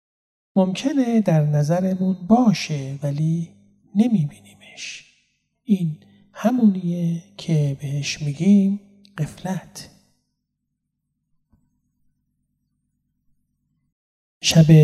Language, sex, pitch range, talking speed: Persian, male, 145-195 Hz, 55 wpm